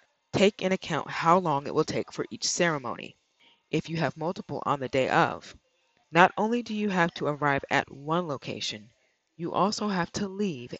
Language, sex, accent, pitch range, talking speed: English, female, American, 140-185 Hz, 190 wpm